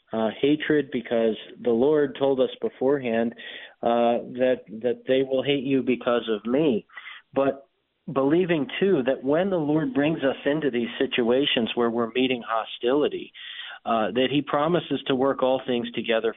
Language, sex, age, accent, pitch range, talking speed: English, male, 40-59, American, 120-135 Hz, 160 wpm